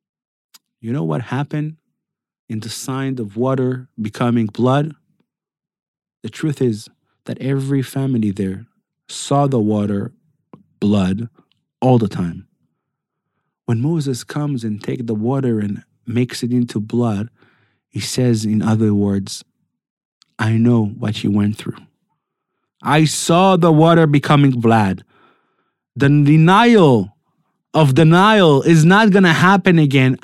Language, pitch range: English, 110-160 Hz